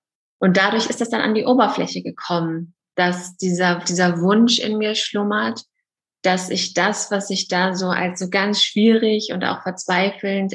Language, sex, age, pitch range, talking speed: German, female, 20-39, 180-205 Hz, 165 wpm